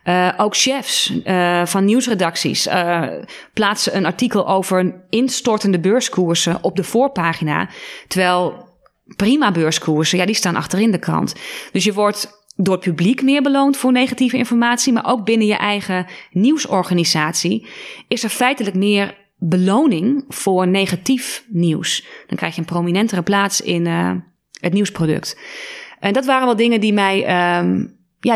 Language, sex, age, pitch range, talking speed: Dutch, female, 20-39, 180-235 Hz, 145 wpm